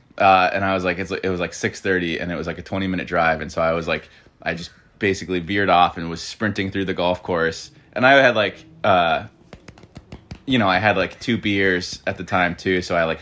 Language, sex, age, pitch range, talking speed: English, male, 20-39, 85-100 Hz, 250 wpm